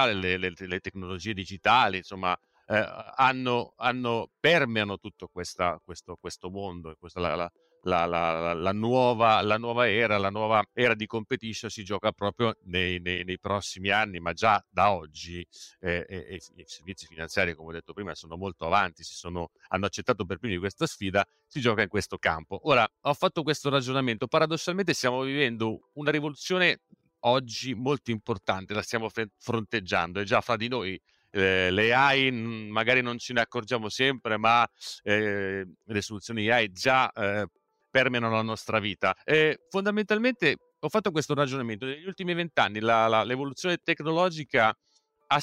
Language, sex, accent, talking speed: Italian, male, native, 155 wpm